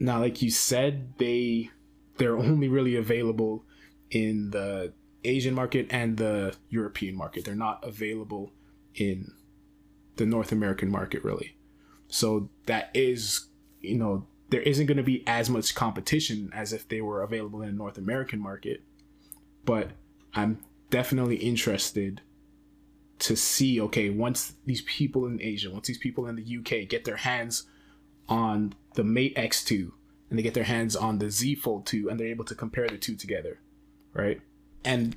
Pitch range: 110-135 Hz